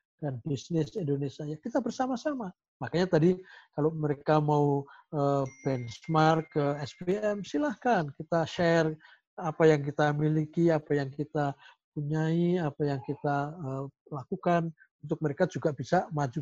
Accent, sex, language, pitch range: native, male, Indonesian, 135-170 Hz